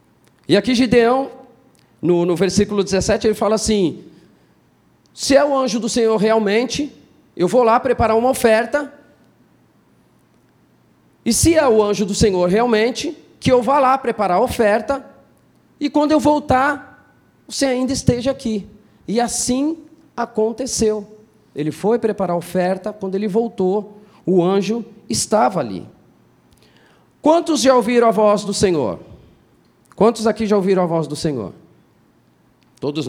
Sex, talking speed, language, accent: male, 140 wpm, Portuguese, Brazilian